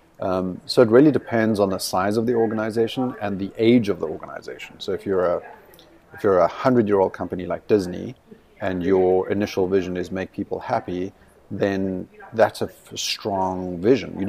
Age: 40-59